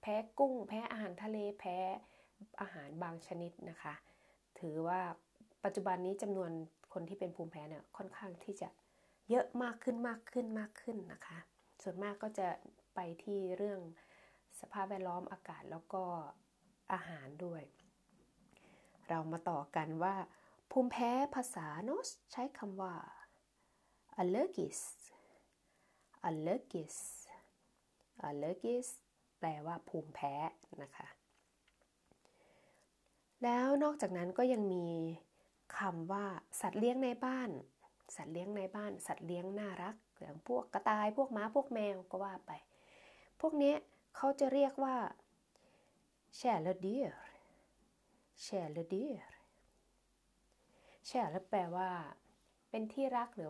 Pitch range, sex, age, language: 175-230 Hz, female, 20-39, Thai